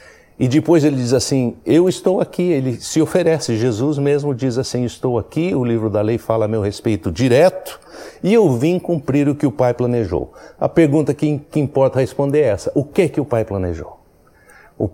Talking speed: 200 wpm